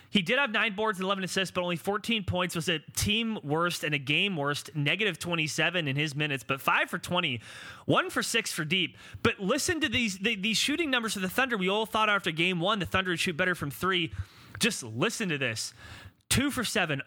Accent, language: American, English